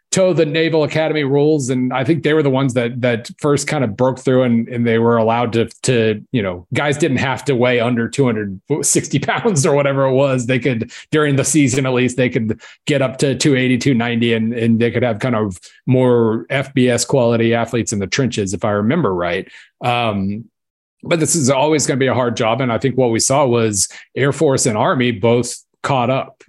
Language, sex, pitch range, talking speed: English, male, 115-135 Hz, 220 wpm